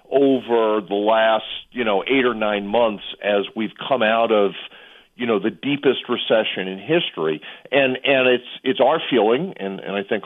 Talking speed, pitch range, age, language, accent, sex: 180 wpm, 110-135 Hz, 50-69, English, American, male